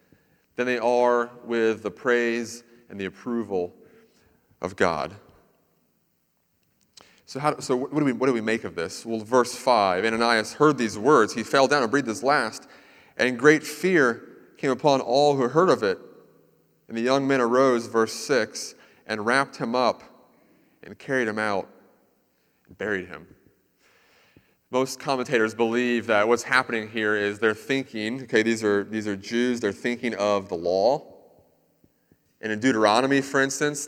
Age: 30-49